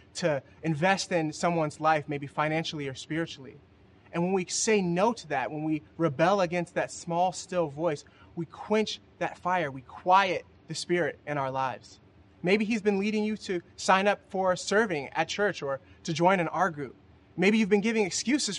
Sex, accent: male, American